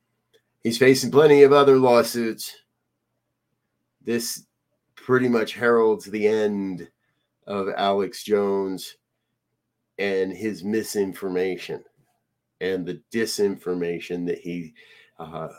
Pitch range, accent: 90-135 Hz, American